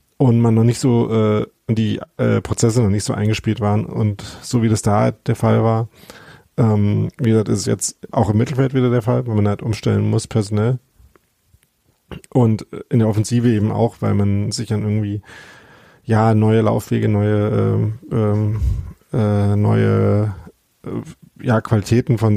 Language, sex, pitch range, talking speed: German, male, 105-120 Hz, 170 wpm